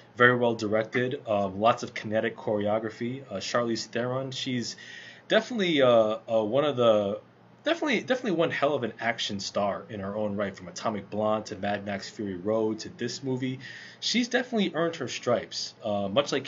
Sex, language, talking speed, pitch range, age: male, English, 180 wpm, 105-130 Hz, 20-39